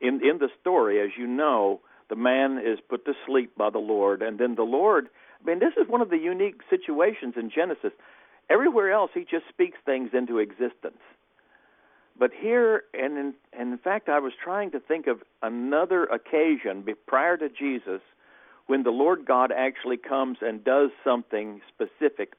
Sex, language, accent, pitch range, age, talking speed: male, English, American, 125-200 Hz, 60-79, 180 wpm